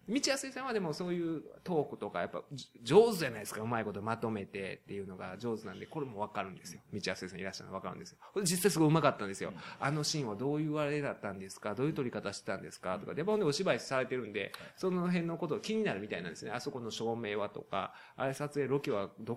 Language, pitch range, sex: Japanese, 120-180 Hz, male